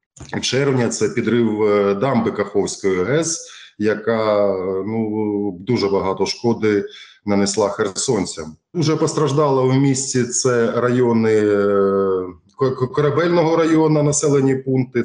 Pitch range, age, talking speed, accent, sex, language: 105-130 Hz, 20-39, 95 wpm, native, male, Ukrainian